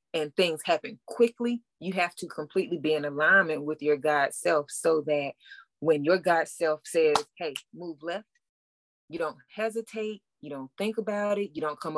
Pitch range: 155-220 Hz